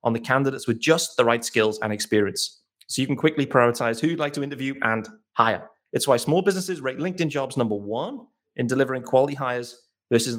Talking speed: 210 wpm